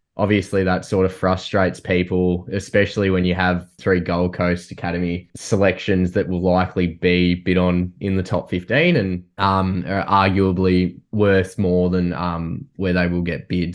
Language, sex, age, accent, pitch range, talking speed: English, male, 10-29, Australian, 90-100 Hz, 165 wpm